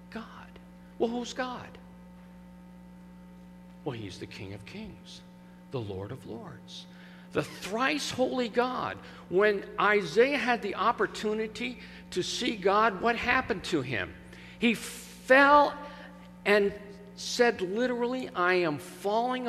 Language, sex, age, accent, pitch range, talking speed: English, male, 50-69, American, 175-235 Hz, 115 wpm